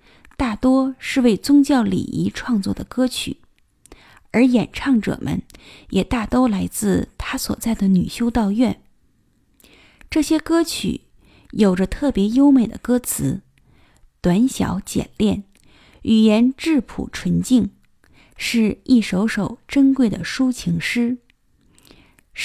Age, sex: 20-39, female